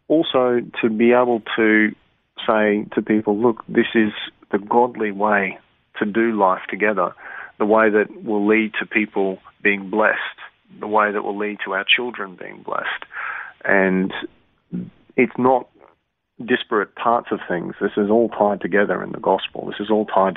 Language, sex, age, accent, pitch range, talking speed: English, male, 40-59, Australian, 95-110 Hz, 165 wpm